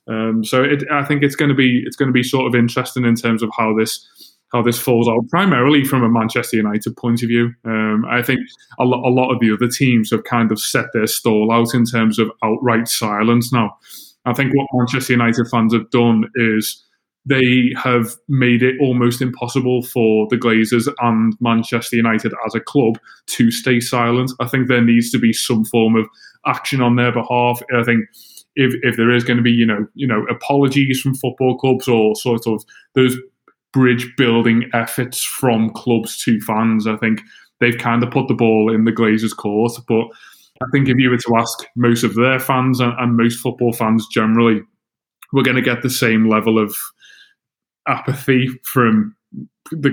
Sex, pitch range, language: male, 115-125 Hz, English